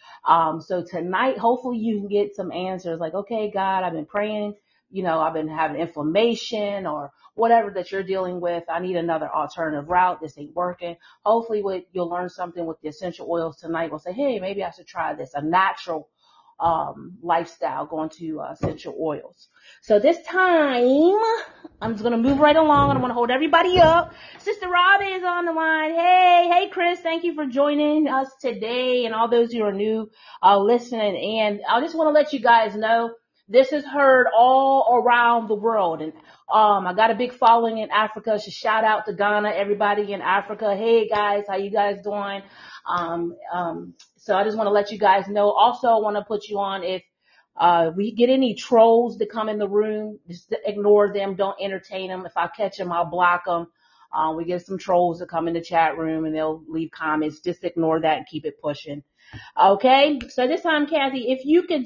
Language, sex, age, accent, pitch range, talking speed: English, female, 30-49, American, 175-250 Hz, 205 wpm